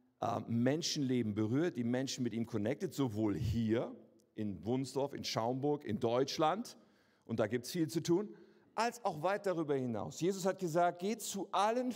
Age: 50-69